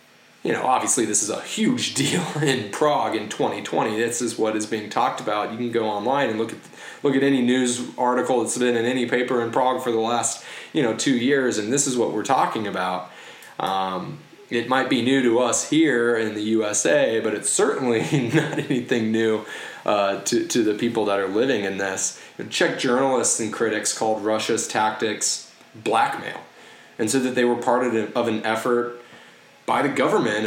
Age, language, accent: 20-39, English, American